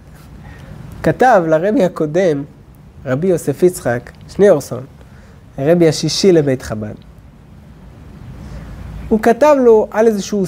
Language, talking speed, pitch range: Hebrew, 90 wpm, 125-200 Hz